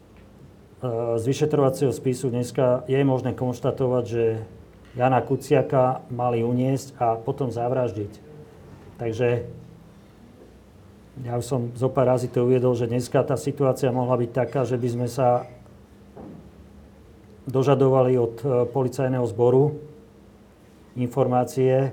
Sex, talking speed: male, 105 wpm